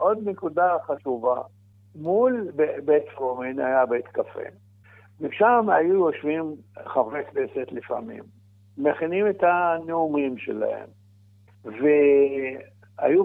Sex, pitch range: male, 120-155 Hz